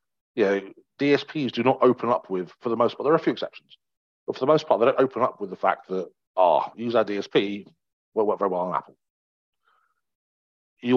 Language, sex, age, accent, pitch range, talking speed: English, male, 40-59, British, 100-125 Hz, 230 wpm